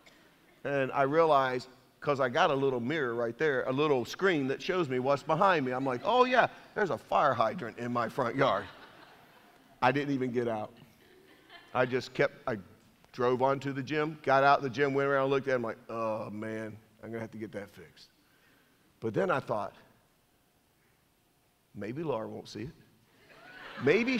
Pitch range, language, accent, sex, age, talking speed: 125-170 Hz, English, American, male, 50-69, 190 wpm